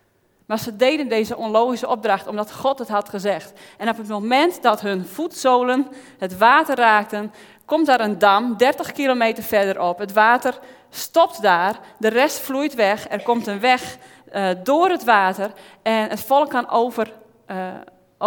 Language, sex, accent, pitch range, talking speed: Dutch, female, Dutch, 200-250 Hz, 165 wpm